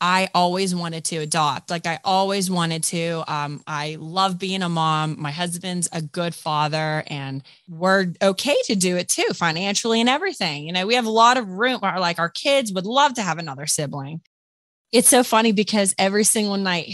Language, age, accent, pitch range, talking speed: English, 20-39, American, 170-255 Hz, 195 wpm